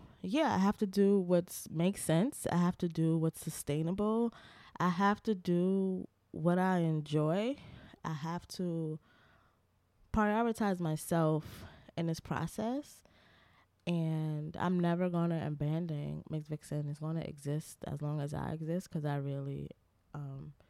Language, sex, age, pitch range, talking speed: English, female, 20-39, 145-170 Hz, 145 wpm